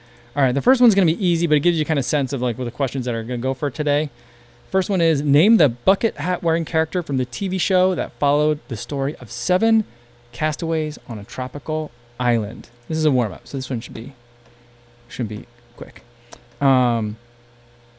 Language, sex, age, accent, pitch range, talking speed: English, male, 20-39, American, 120-155 Hz, 225 wpm